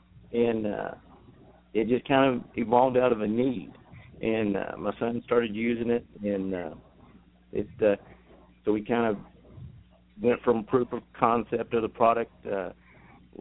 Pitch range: 105-120 Hz